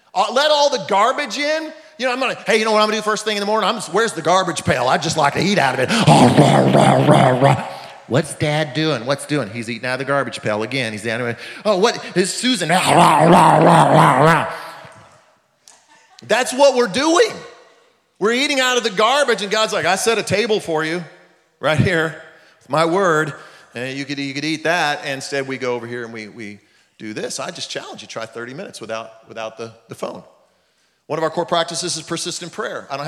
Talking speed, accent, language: 220 wpm, American, English